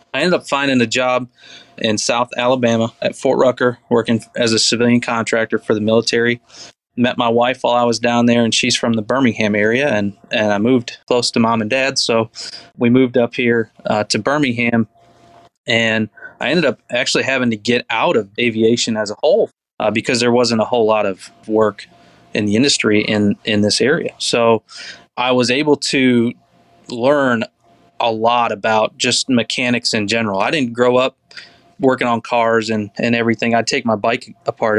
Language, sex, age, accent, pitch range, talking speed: English, male, 20-39, American, 110-125 Hz, 190 wpm